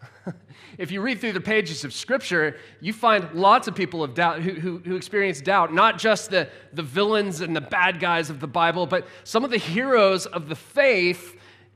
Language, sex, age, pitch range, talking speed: English, male, 30-49, 160-220 Hz, 205 wpm